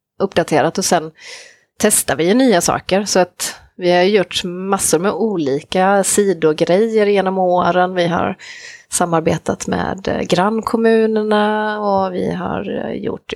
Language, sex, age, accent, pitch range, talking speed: Swedish, female, 30-49, native, 170-205 Hz, 120 wpm